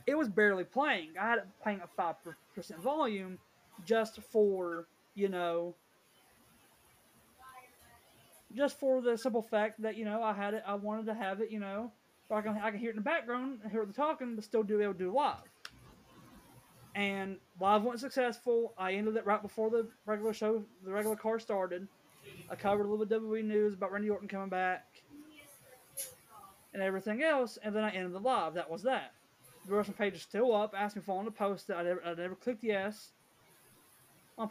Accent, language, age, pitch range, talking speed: American, English, 20-39, 190-230 Hz, 200 wpm